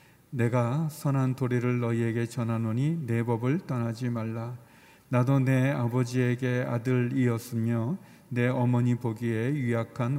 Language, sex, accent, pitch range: Korean, male, native, 115-130 Hz